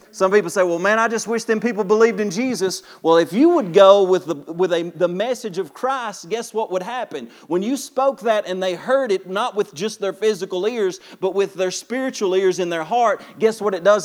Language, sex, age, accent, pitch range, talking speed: English, male, 40-59, American, 175-230 Hz, 240 wpm